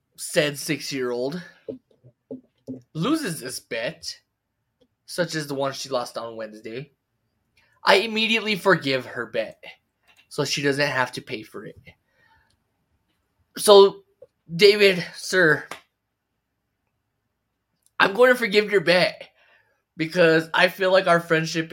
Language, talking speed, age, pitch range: English, 115 wpm, 20-39, 115-155 Hz